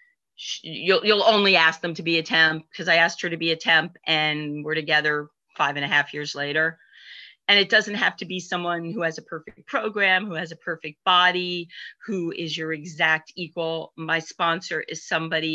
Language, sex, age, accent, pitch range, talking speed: English, female, 40-59, American, 160-180 Hz, 200 wpm